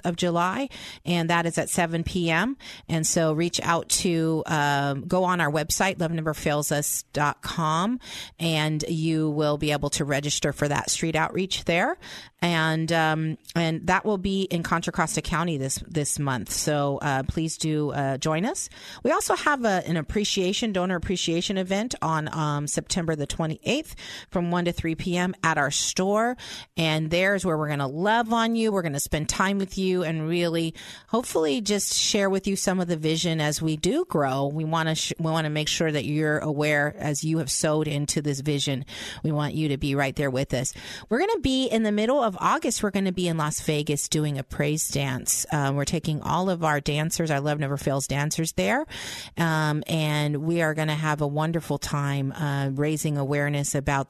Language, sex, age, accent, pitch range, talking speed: English, female, 40-59, American, 150-180 Hz, 200 wpm